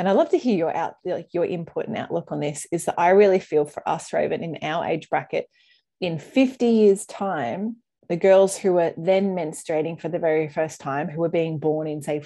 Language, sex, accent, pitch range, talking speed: English, female, Australian, 160-195 Hz, 230 wpm